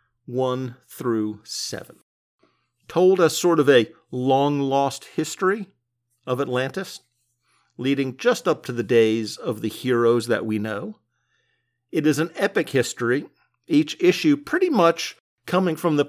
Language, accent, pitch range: English, American, 120-155 Hz